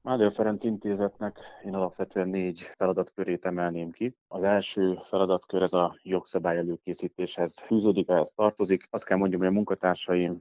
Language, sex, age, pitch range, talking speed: Hungarian, male, 30-49, 90-105 Hz, 145 wpm